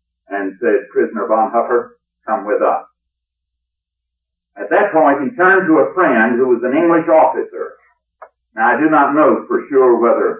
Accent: American